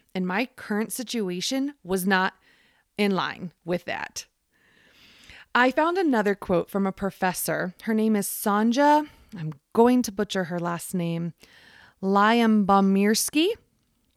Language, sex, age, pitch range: English, female, 30-49, 185-240 Hz